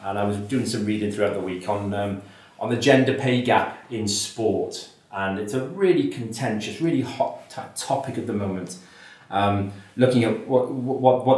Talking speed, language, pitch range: 190 wpm, English, 105-130 Hz